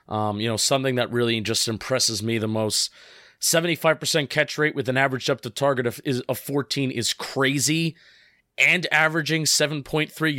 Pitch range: 115-150 Hz